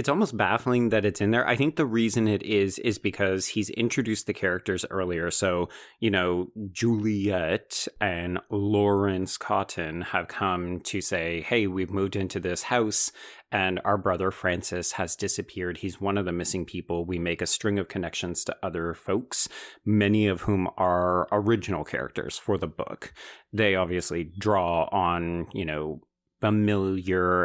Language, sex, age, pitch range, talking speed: English, male, 30-49, 90-105 Hz, 160 wpm